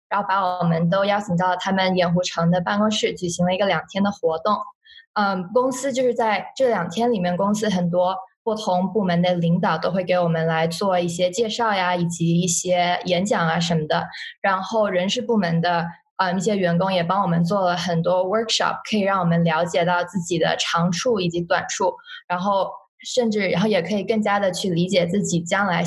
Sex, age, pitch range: female, 20-39, 175-215 Hz